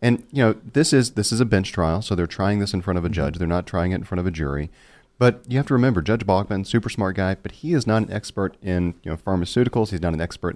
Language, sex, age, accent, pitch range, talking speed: English, male, 40-59, American, 85-105 Hz, 295 wpm